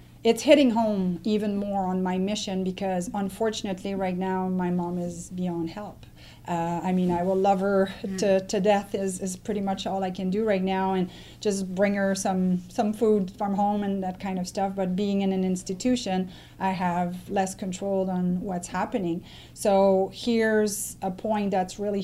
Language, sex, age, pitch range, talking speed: English, female, 30-49, 180-205 Hz, 190 wpm